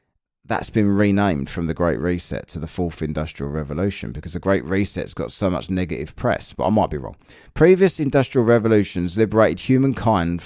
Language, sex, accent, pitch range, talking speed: English, male, British, 90-115 Hz, 180 wpm